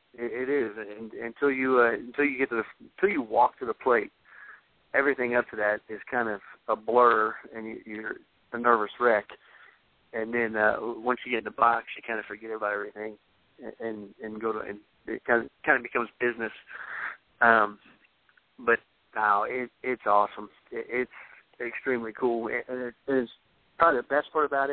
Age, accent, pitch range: 40-59, American, 110-125 Hz